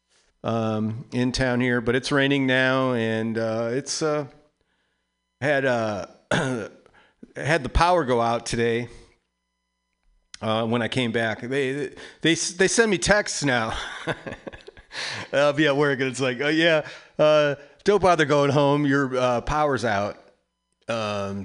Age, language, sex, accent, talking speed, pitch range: 40-59, English, male, American, 145 wpm, 115-165 Hz